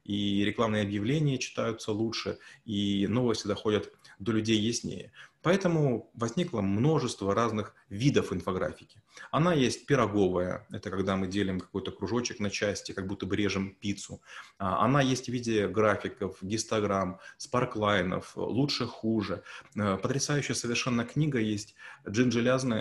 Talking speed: 125 wpm